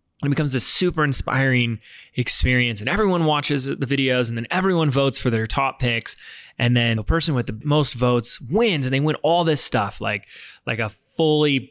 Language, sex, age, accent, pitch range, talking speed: English, male, 20-39, American, 115-150 Hz, 195 wpm